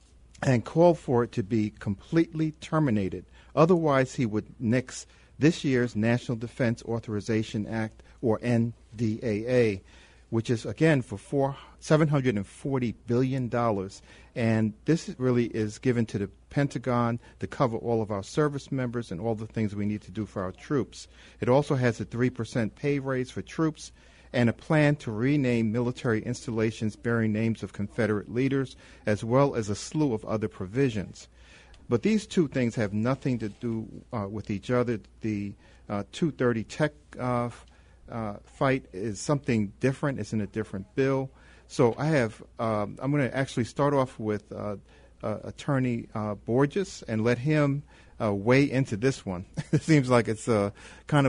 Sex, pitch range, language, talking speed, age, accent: male, 105-135 Hz, English, 165 wpm, 50-69, American